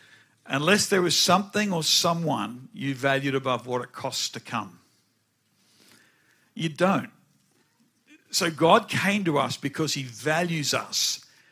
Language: English